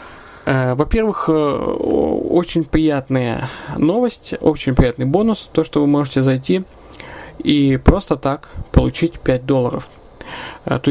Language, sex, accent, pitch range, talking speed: Russian, male, native, 130-165 Hz, 105 wpm